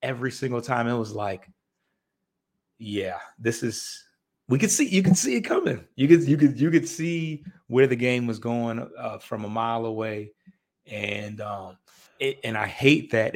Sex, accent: male, American